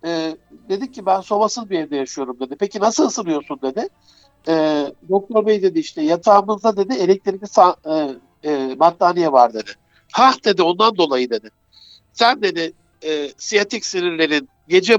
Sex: male